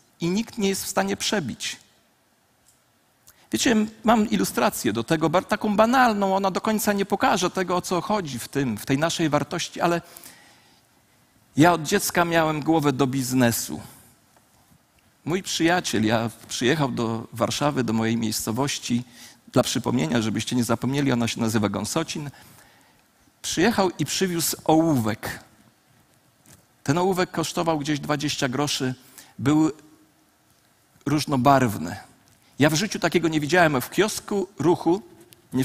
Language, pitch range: Polish, 125-185 Hz